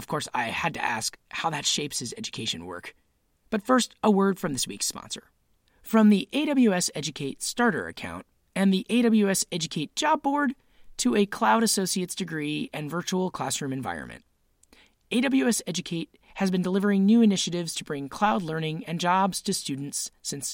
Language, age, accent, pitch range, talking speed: English, 30-49, American, 145-215 Hz, 165 wpm